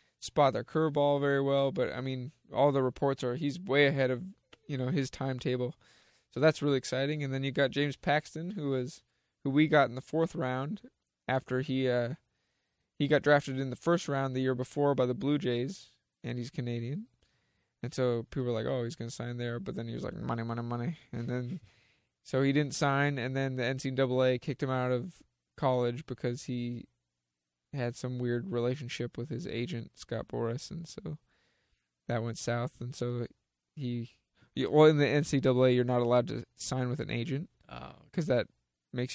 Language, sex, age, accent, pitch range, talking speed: English, male, 20-39, American, 120-145 Hz, 195 wpm